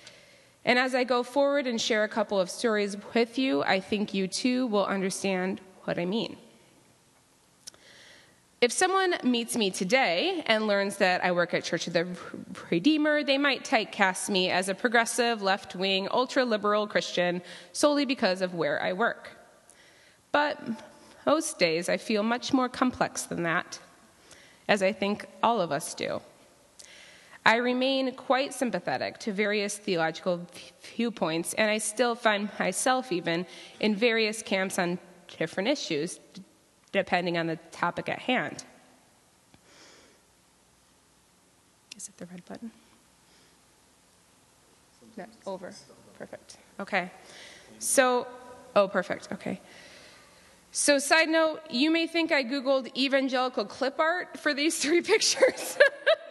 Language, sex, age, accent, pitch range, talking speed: English, female, 20-39, American, 185-265 Hz, 130 wpm